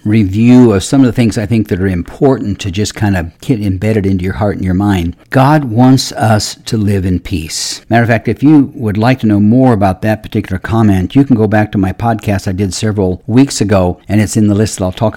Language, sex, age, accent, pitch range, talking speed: English, male, 60-79, American, 100-120 Hz, 255 wpm